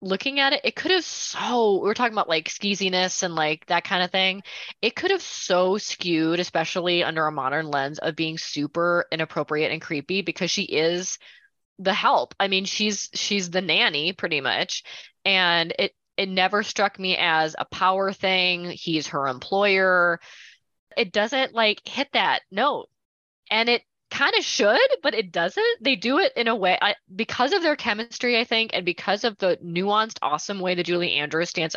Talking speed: 185 wpm